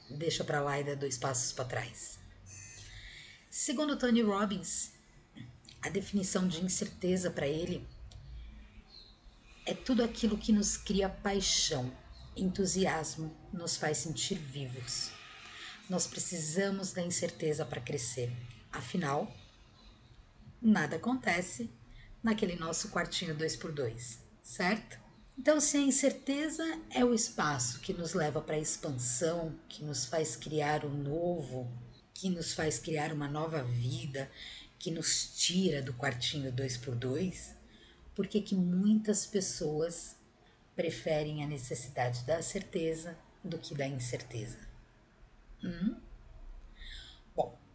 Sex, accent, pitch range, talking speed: female, Brazilian, 130-190 Hz, 120 wpm